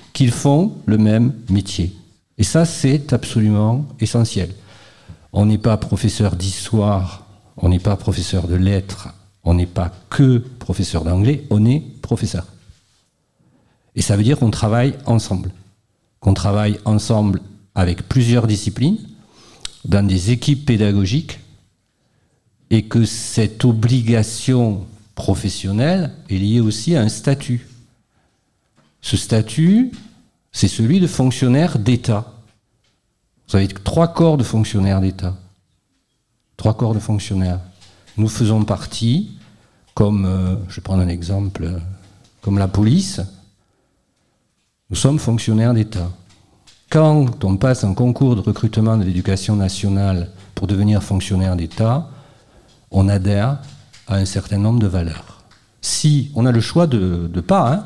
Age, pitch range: 50-69, 95-120 Hz